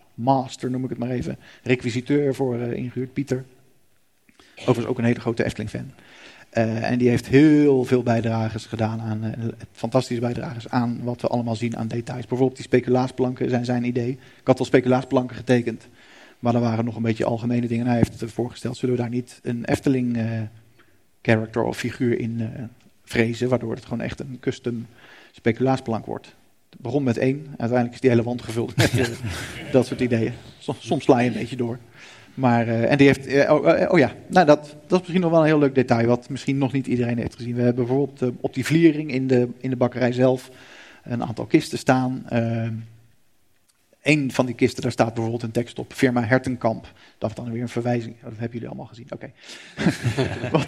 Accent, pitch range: Dutch, 115-130 Hz